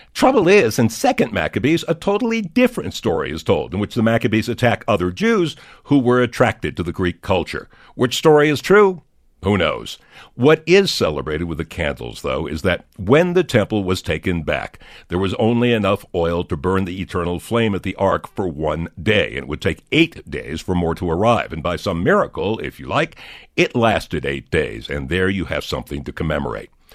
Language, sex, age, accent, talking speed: English, male, 60-79, American, 200 wpm